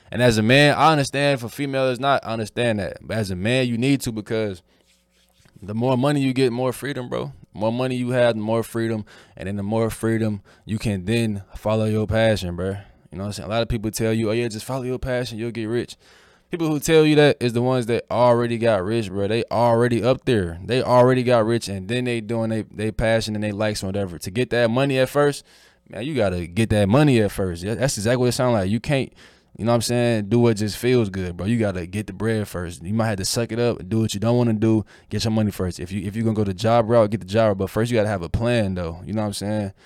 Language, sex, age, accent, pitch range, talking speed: English, male, 20-39, American, 100-120 Hz, 290 wpm